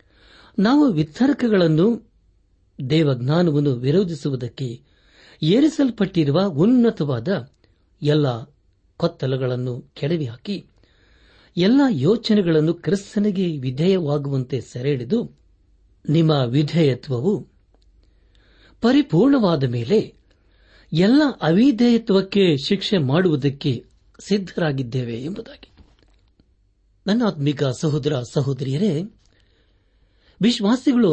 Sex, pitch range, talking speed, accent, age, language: male, 125-190 Hz, 55 wpm, native, 60-79, Kannada